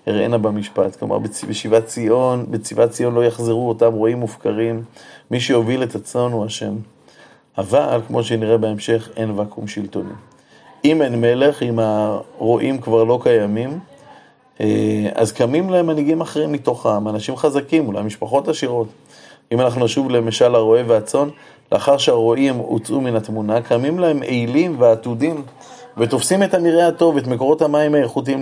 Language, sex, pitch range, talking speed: Hebrew, male, 110-145 Hz, 140 wpm